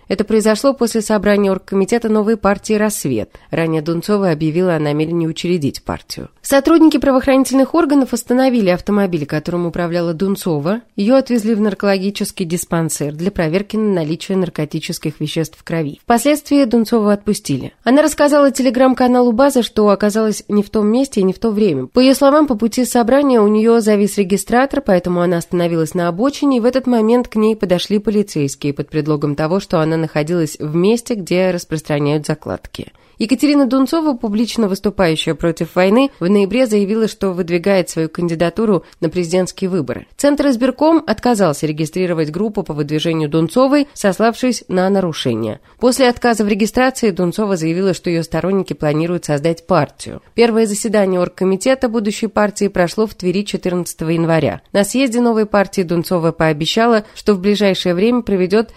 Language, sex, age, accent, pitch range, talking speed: Russian, female, 20-39, native, 170-230 Hz, 150 wpm